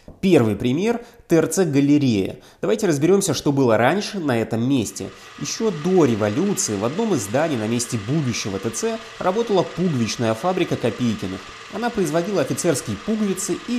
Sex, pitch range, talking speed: male, 120-195 Hz, 135 wpm